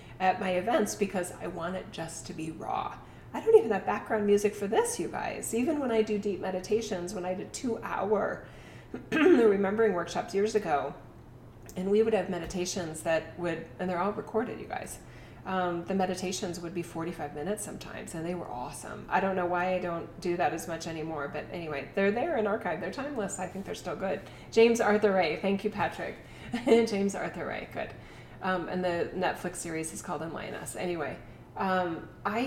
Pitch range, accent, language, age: 170-210 Hz, American, English, 30-49